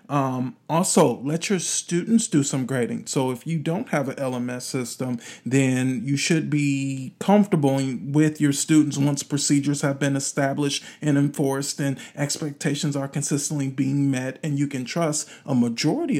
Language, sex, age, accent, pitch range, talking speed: English, male, 40-59, American, 135-175 Hz, 160 wpm